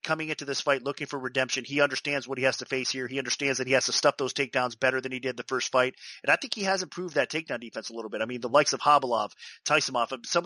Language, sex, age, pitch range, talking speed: English, male, 30-49, 125-145 Hz, 295 wpm